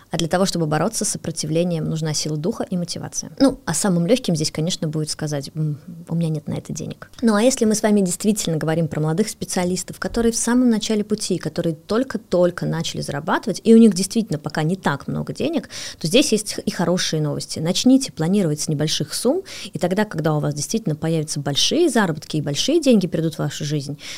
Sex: female